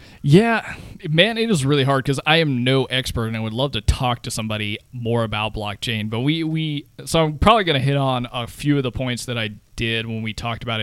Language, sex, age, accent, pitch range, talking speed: English, male, 20-39, American, 115-145 Hz, 245 wpm